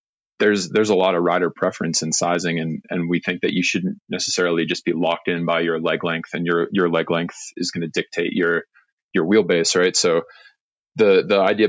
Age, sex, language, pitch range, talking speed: 20-39, male, English, 85-95 Hz, 215 wpm